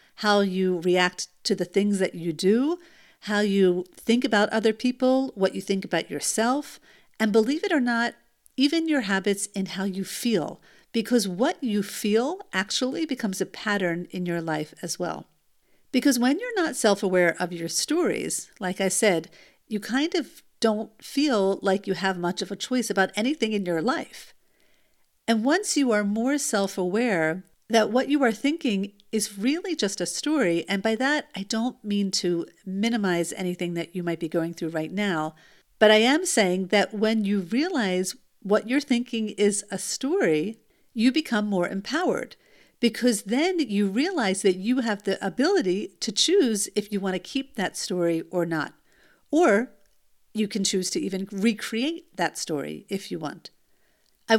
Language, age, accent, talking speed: English, 50-69, American, 175 wpm